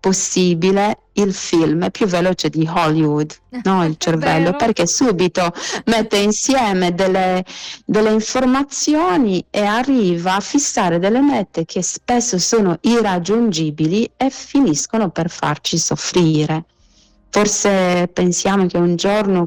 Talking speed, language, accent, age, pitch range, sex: 115 wpm, Italian, native, 30-49, 170-210 Hz, female